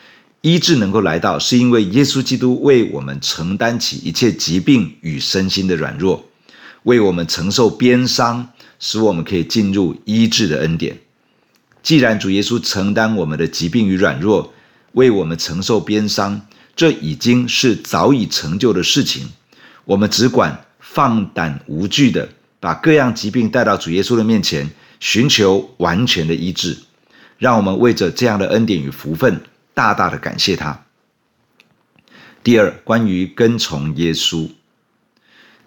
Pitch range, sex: 90-120 Hz, male